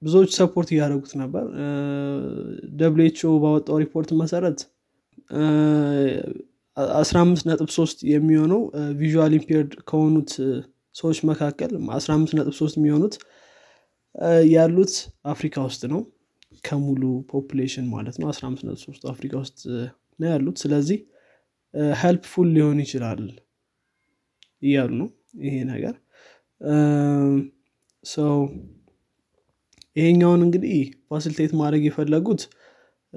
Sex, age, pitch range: male, 20-39, 135-165 Hz